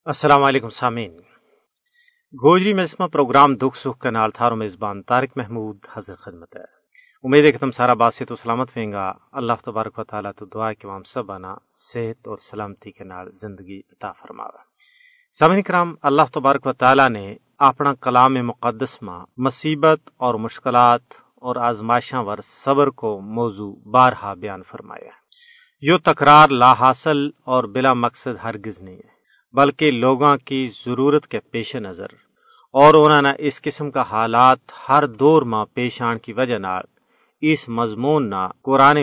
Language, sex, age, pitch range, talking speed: Urdu, male, 40-59, 115-145 Hz, 155 wpm